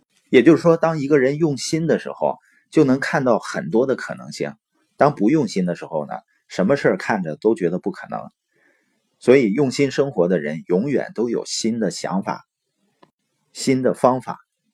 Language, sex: Chinese, male